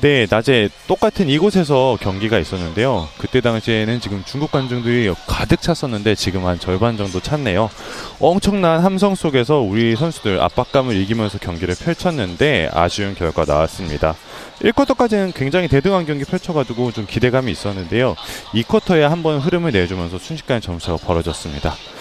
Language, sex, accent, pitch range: Korean, male, native, 95-150 Hz